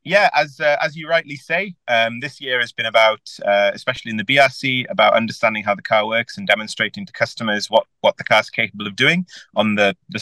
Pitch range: 100-130 Hz